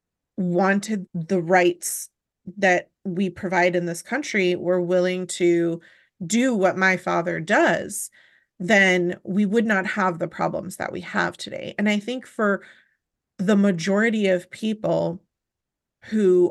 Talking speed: 135 wpm